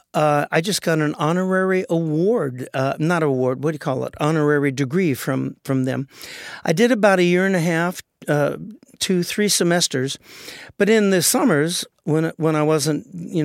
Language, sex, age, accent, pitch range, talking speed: English, male, 50-69, American, 145-185 Hz, 185 wpm